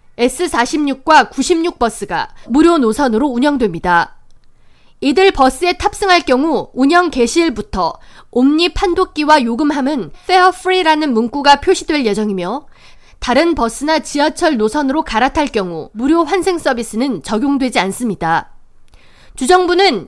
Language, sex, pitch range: Korean, female, 240-335 Hz